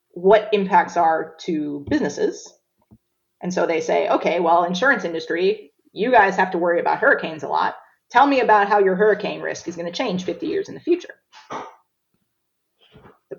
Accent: American